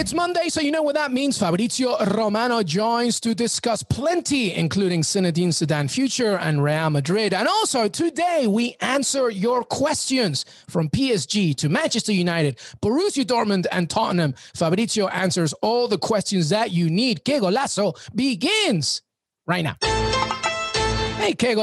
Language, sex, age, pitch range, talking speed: English, male, 30-49, 155-225 Hz, 140 wpm